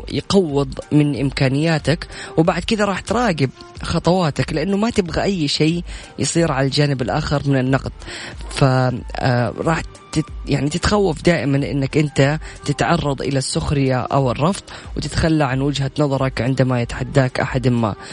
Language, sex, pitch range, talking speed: Arabic, female, 130-155 Hz, 130 wpm